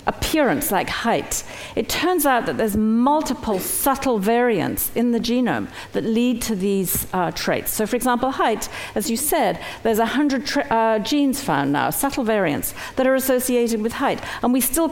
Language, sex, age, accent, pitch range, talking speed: English, female, 50-69, British, 210-255 Hz, 175 wpm